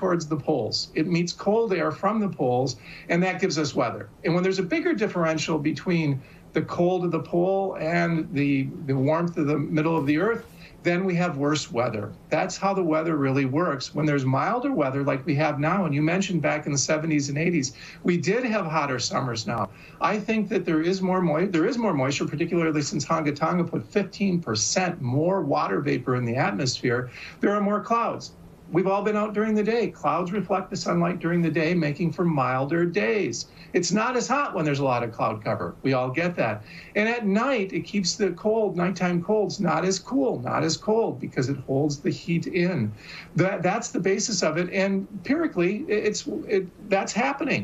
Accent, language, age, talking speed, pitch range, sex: American, English, 50-69, 205 wpm, 150-195 Hz, male